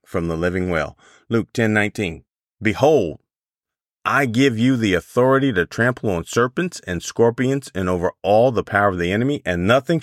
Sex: male